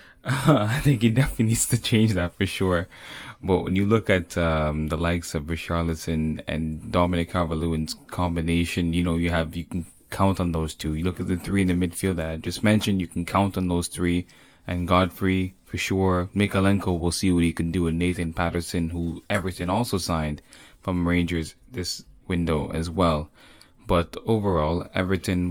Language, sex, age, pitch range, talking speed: English, male, 10-29, 85-100 Hz, 190 wpm